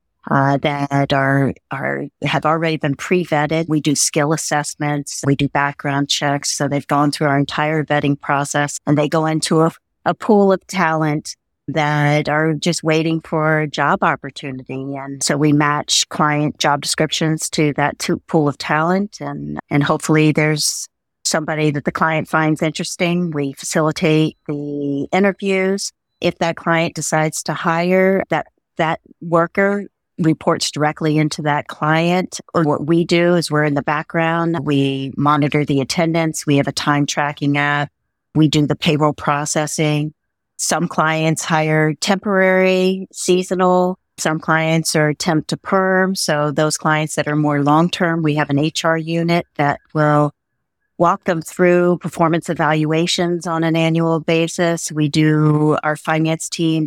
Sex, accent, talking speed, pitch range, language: female, American, 155 wpm, 145-165 Hz, English